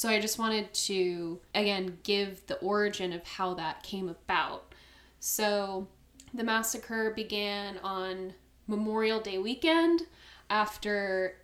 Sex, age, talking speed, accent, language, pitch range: female, 10-29, 120 wpm, American, English, 185-210 Hz